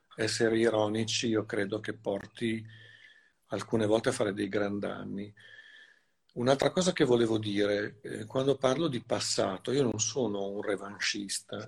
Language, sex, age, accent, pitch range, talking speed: Italian, male, 50-69, native, 105-130 Hz, 140 wpm